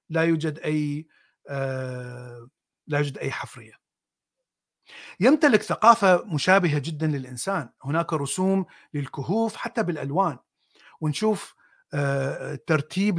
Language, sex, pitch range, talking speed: Arabic, male, 145-190 Hz, 85 wpm